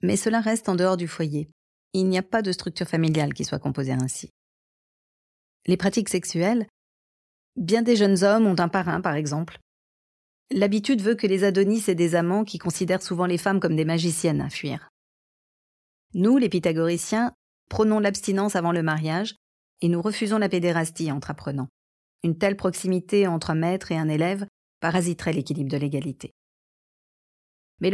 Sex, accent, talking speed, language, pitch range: female, French, 165 wpm, French, 155-200 Hz